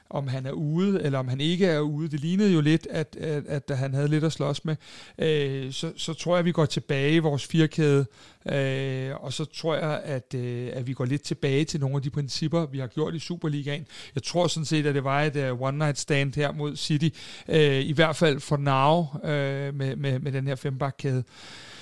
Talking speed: 230 wpm